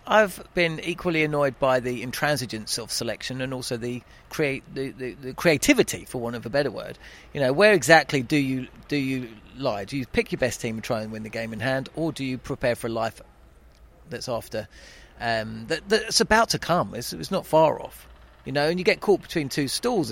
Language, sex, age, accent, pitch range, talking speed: English, male, 40-59, British, 115-155 Hz, 225 wpm